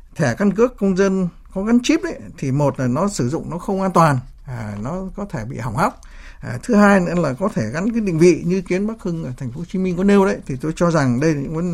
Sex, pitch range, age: male, 135-200 Hz, 60-79